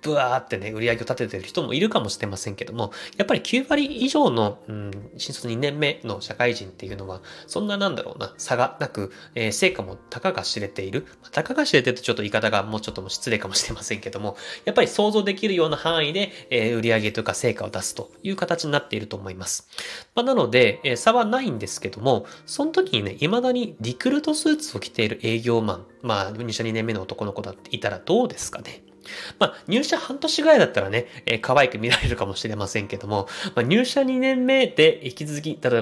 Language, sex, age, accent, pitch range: Japanese, male, 20-39, native, 110-180 Hz